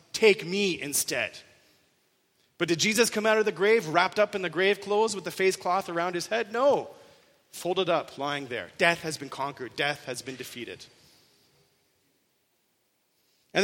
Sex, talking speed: male, 165 wpm